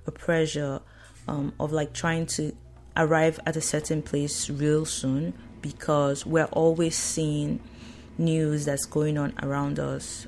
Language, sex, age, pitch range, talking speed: English, female, 20-39, 120-160 Hz, 140 wpm